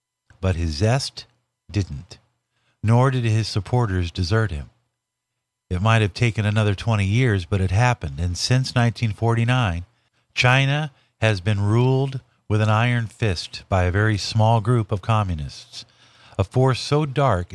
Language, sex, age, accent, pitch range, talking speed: English, male, 50-69, American, 100-125 Hz, 145 wpm